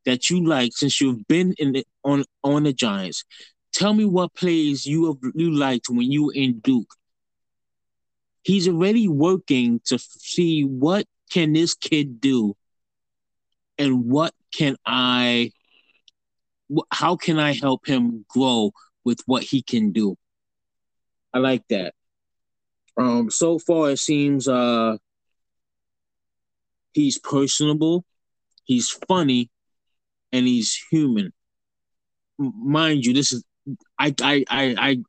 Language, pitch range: English, 120-155 Hz